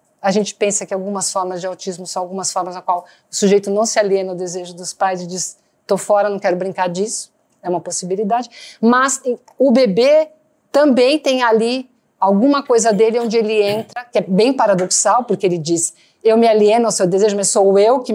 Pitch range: 180-215 Hz